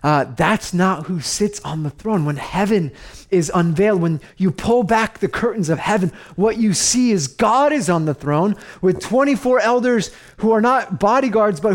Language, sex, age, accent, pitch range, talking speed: English, male, 30-49, American, 125-190 Hz, 190 wpm